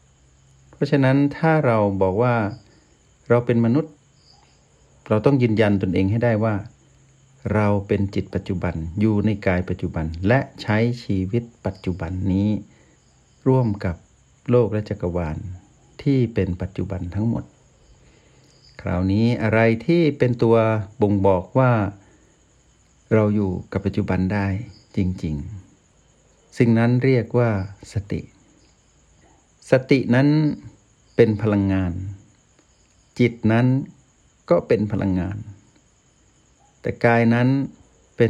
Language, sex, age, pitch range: Thai, male, 60-79, 95-120 Hz